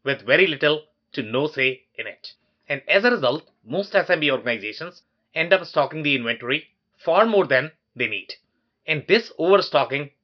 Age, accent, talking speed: 30-49, Indian, 165 wpm